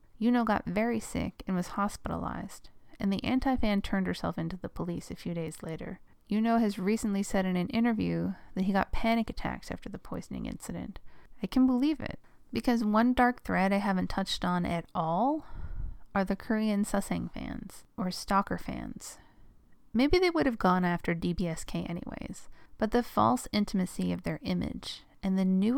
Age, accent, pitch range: 30-49, American, 185-245 Hz